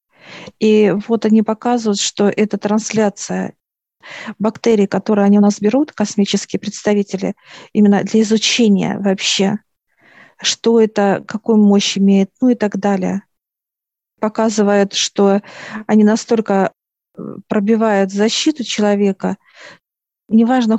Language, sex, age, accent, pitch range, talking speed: Russian, female, 50-69, native, 200-230 Hz, 105 wpm